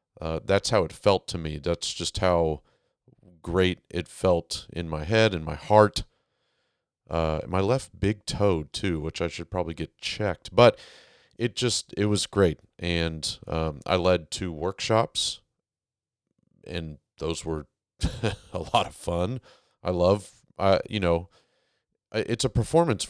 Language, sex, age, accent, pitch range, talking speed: English, male, 40-59, American, 85-110 Hz, 150 wpm